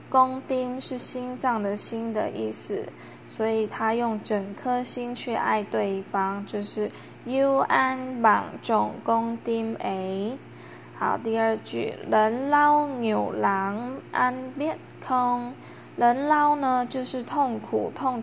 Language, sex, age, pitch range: Vietnamese, female, 10-29, 215-260 Hz